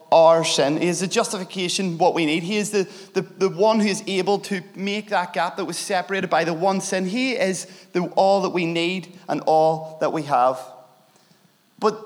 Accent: British